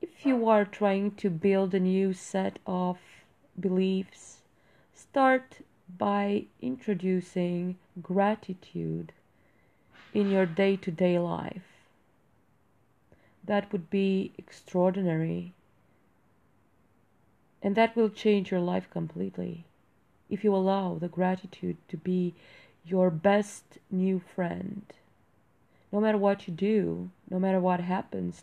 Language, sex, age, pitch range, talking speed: English, female, 30-49, 180-205 Hz, 105 wpm